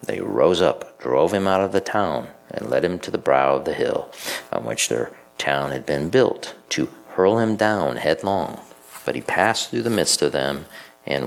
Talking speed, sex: 210 wpm, male